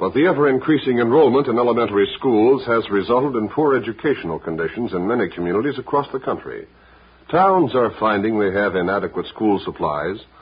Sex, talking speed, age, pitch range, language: male, 155 wpm, 60-79, 100-150 Hz, English